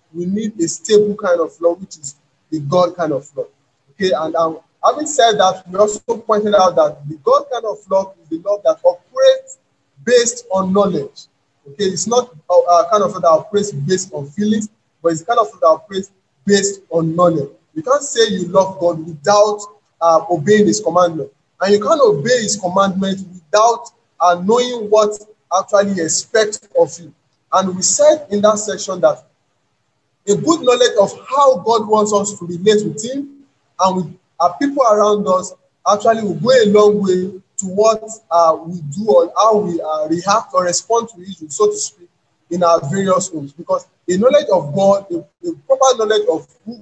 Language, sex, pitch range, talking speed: English, male, 170-220 Hz, 190 wpm